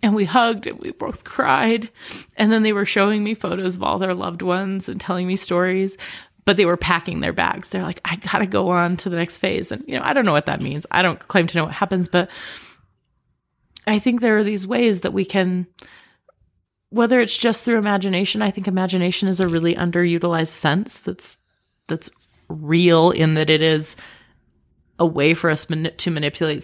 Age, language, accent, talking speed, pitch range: 30-49, English, American, 205 wpm, 155-190 Hz